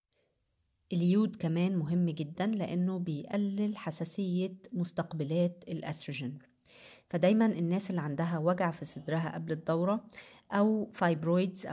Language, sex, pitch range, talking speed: Arabic, female, 160-190 Hz, 100 wpm